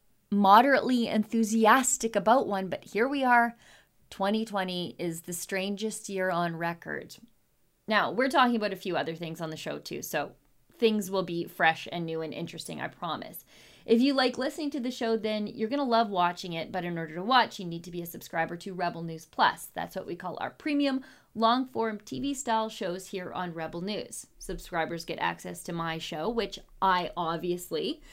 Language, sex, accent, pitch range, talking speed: English, female, American, 175-230 Hz, 190 wpm